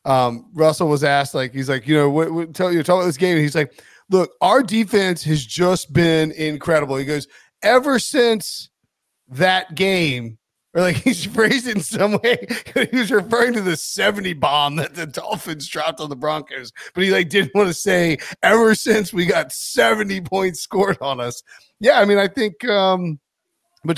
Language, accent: English, American